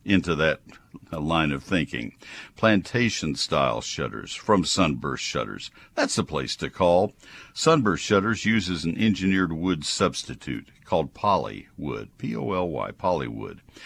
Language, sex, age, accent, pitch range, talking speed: English, male, 60-79, American, 75-100 Hz, 115 wpm